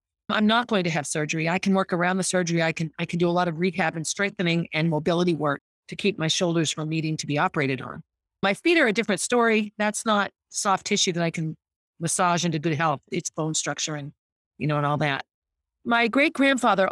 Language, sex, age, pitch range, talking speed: English, female, 40-59, 165-215 Hz, 230 wpm